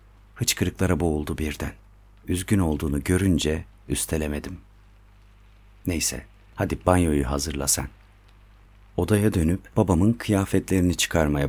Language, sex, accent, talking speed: Turkish, male, native, 90 wpm